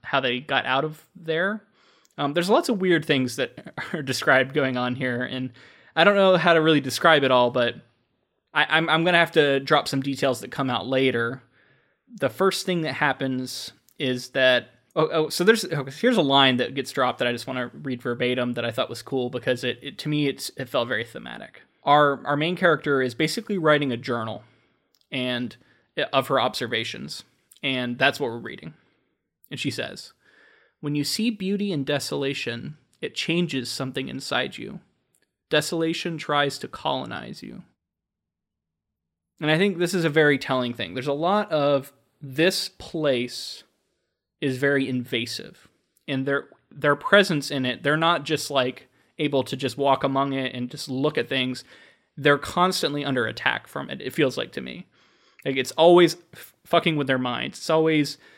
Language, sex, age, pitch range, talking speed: English, male, 20-39, 125-160 Hz, 185 wpm